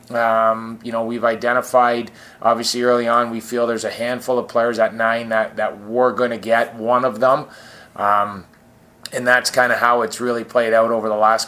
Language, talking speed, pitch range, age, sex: English, 205 wpm, 110-125 Hz, 20-39, male